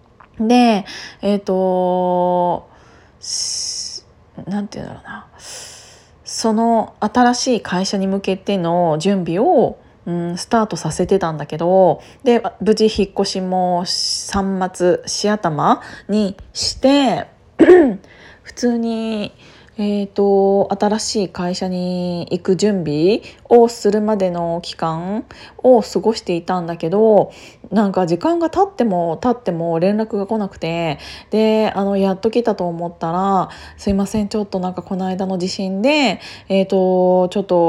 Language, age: Japanese, 20-39